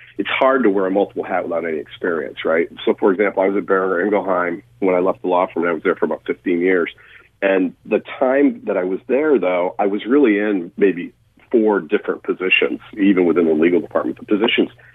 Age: 50-69